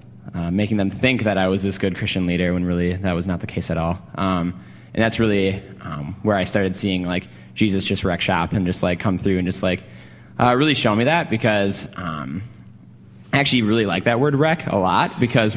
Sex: male